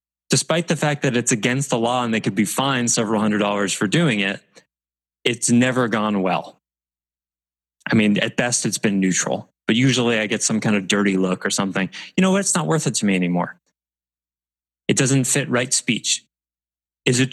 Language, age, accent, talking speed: English, 20-39, American, 200 wpm